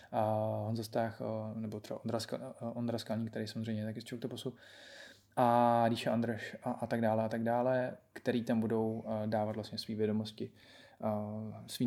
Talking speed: 140 wpm